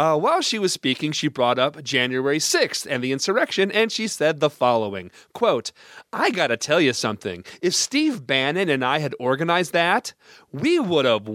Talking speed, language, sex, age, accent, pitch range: 185 wpm, English, male, 40-59, American, 150-205 Hz